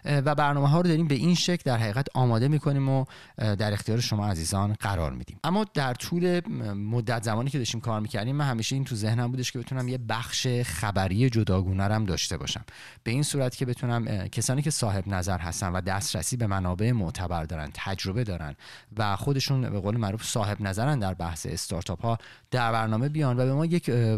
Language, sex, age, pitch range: Persian, male, 30-49, 100-130 Hz